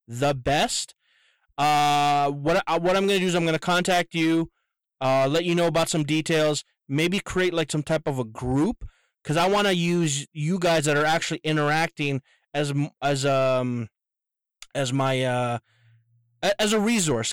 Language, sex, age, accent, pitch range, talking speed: English, male, 20-39, American, 140-185 Hz, 175 wpm